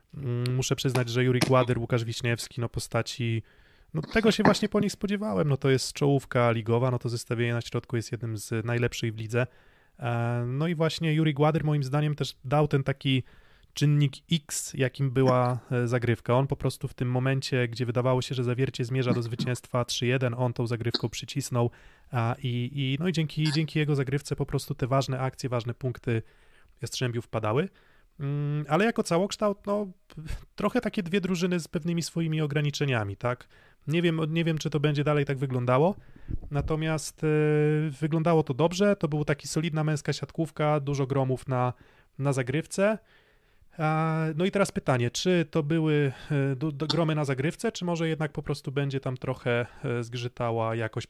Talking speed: 170 wpm